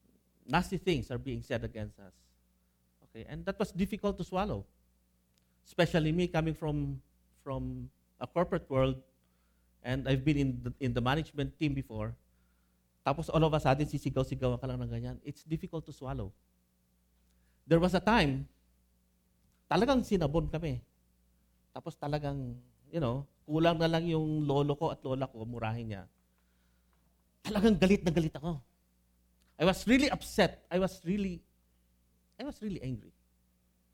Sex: male